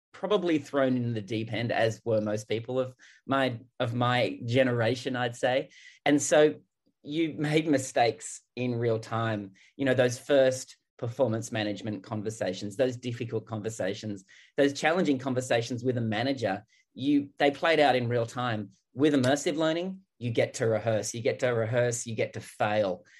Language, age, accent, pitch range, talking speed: English, 30-49, Australian, 100-130 Hz, 165 wpm